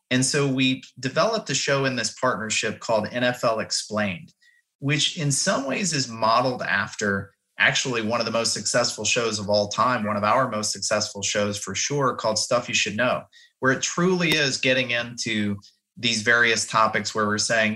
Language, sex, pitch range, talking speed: English, male, 105-130 Hz, 180 wpm